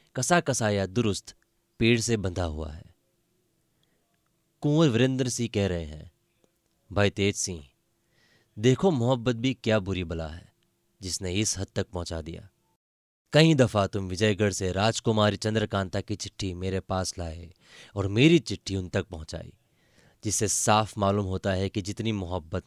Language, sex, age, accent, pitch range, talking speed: Hindi, male, 30-49, native, 95-115 Hz, 150 wpm